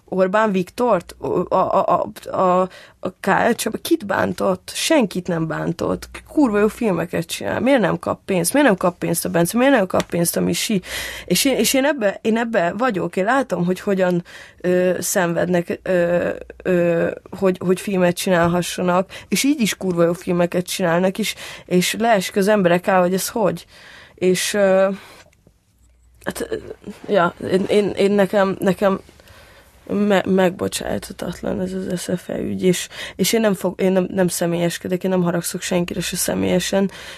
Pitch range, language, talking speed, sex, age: 180-195 Hz, Hungarian, 165 wpm, female, 20-39